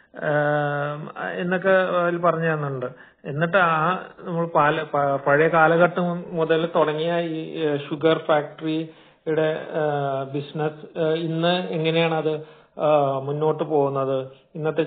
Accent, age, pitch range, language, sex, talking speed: native, 40-59, 150-175 Hz, Malayalam, male, 75 wpm